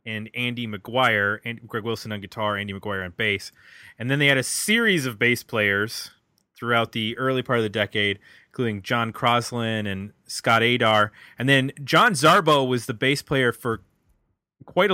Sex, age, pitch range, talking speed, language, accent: male, 30-49, 110-140 Hz, 175 wpm, English, American